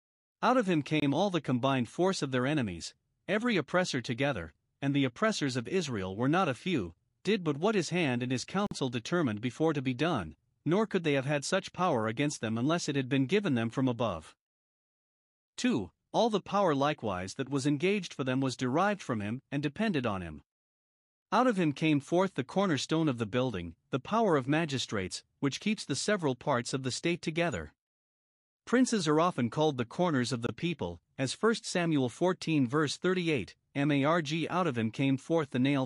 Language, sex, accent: English, male, American